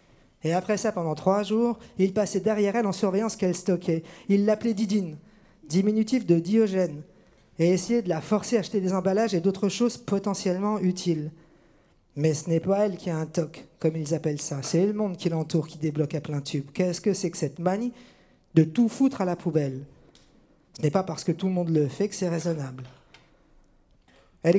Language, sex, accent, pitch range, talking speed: French, male, French, 160-205 Hz, 205 wpm